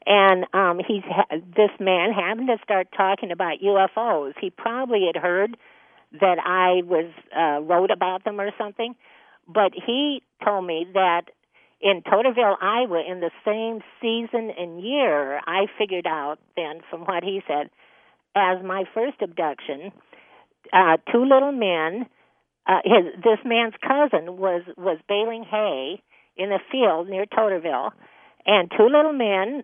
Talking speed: 145 wpm